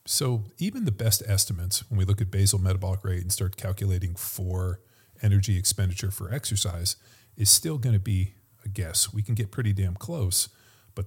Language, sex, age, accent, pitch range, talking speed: English, male, 40-59, American, 95-110 Hz, 185 wpm